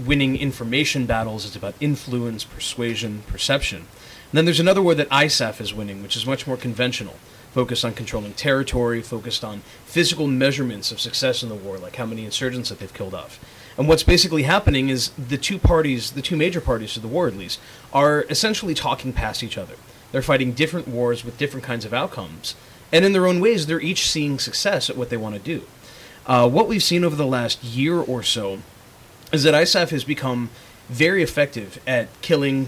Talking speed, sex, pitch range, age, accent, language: 200 wpm, male, 115-150 Hz, 30-49, American, English